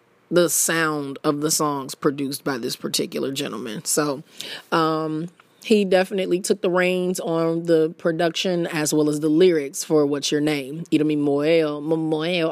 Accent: American